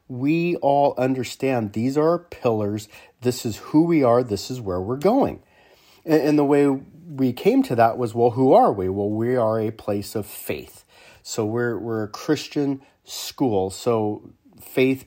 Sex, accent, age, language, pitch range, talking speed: male, American, 40-59, English, 110-135 Hz, 175 wpm